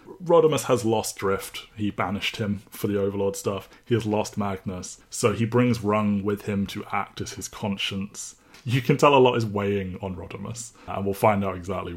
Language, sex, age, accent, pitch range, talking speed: English, male, 20-39, British, 95-110 Hz, 200 wpm